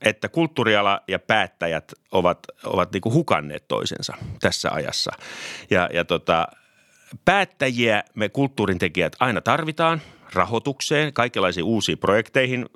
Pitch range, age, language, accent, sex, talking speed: 90-110 Hz, 30-49, Finnish, native, male, 115 wpm